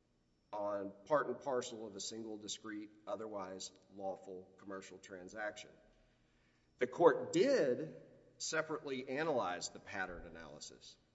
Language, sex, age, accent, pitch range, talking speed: English, male, 40-59, American, 105-140 Hz, 110 wpm